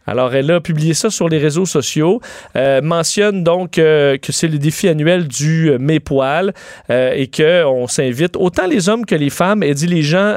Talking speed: 210 wpm